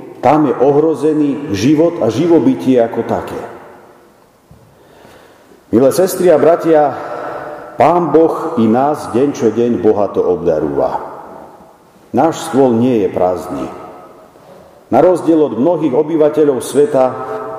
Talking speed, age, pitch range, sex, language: 115 wpm, 50-69, 115-175 Hz, male, Slovak